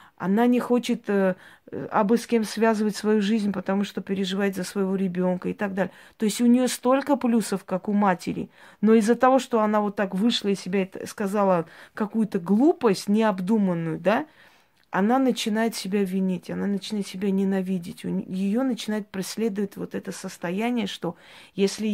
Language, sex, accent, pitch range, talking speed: Russian, female, native, 185-225 Hz, 170 wpm